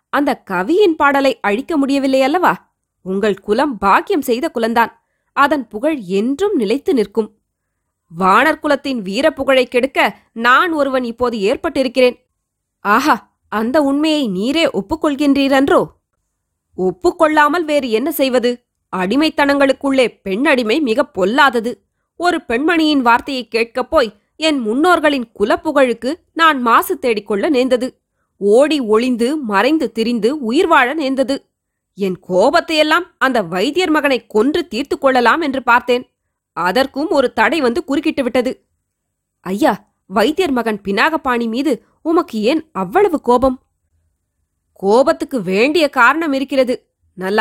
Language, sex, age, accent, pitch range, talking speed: Tamil, female, 20-39, native, 225-305 Hz, 110 wpm